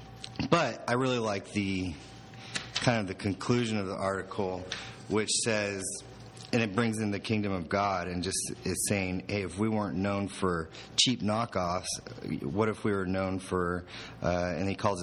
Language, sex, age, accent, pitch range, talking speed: English, male, 30-49, American, 90-105 Hz, 175 wpm